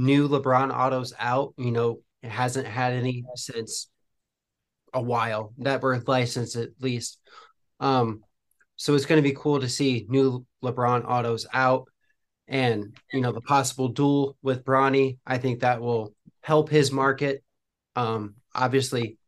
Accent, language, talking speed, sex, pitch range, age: American, English, 150 wpm, male, 120-140 Hz, 20-39